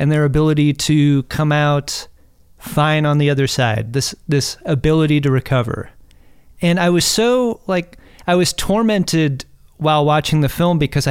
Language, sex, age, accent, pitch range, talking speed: English, male, 30-49, American, 130-170 Hz, 155 wpm